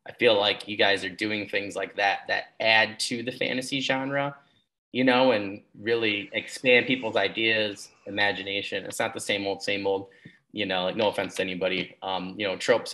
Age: 30-49